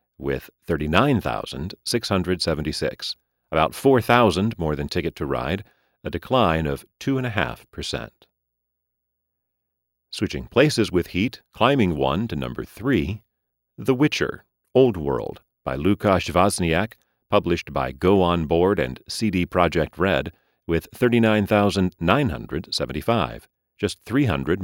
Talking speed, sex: 100 wpm, male